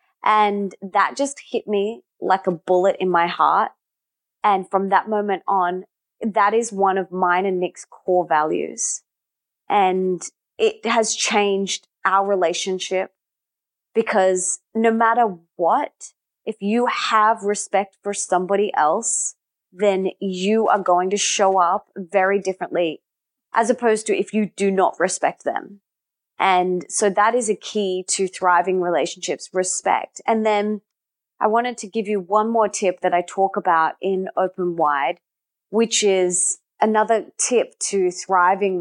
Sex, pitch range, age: female, 185-215 Hz, 20-39